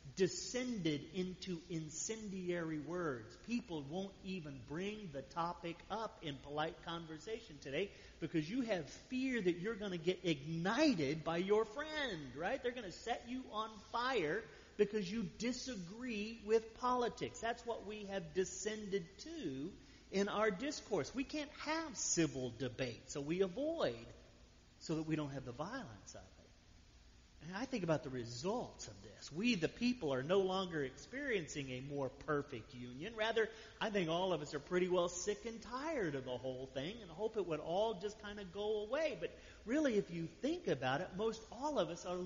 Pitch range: 150-225 Hz